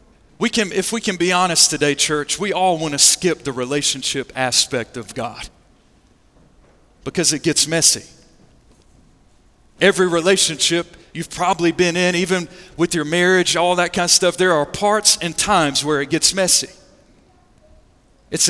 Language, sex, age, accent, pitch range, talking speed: English, male, 40-59, American, 155-225 Hz, 155 wpm